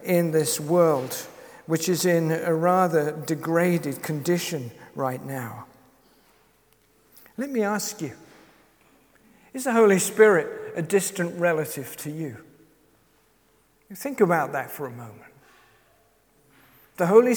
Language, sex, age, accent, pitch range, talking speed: English, male, 50-69, British, 170-235 Hz, 115 wpm